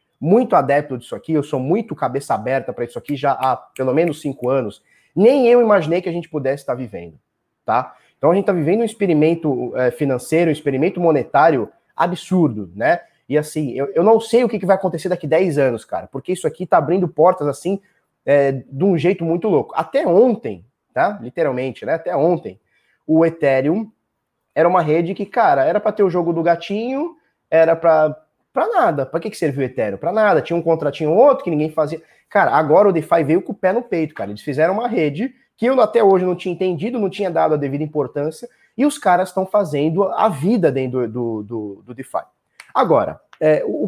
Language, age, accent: Portuguese, 20-39, Brazilian